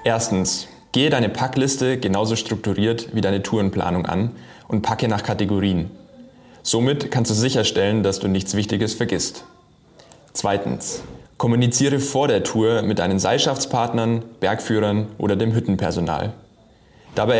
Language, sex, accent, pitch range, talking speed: German, male, German, 100-120 Hz, 125 wpm